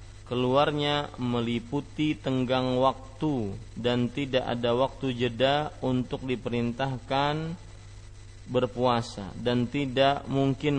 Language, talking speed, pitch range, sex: Malay, 85 wpm, 110-135 Hz, male